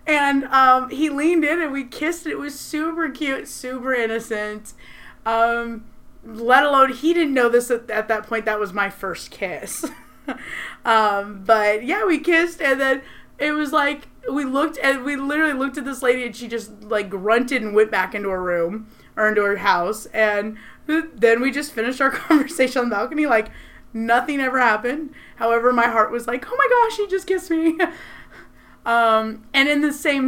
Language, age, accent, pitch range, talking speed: English, 20-39, American, 215-285 Hz, 190 wpm